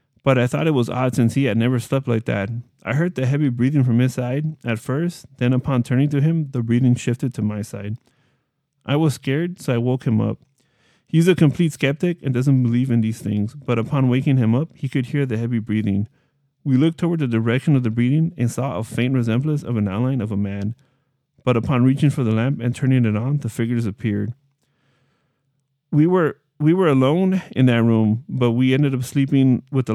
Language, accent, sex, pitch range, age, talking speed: English, American, male, 120-140 Hz, 30-49, 220 wpm